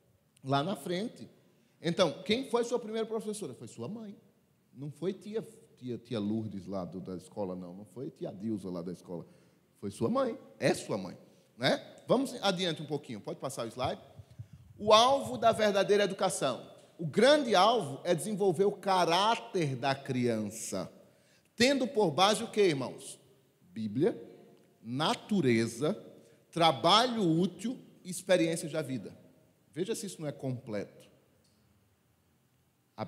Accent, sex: Brazilian, male